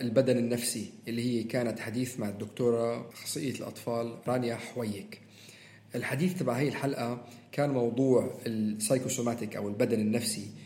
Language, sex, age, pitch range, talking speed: Arabic, male, 40-59, 115-135 Hz, 125 wpm